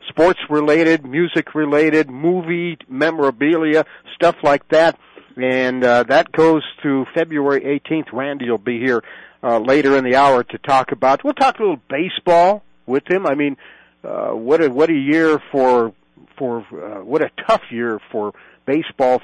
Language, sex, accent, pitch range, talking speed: English, male, American, 125-160 Hz, 160 wpm